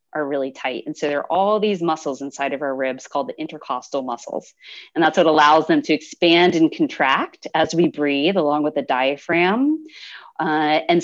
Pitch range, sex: 155-220 Hz, female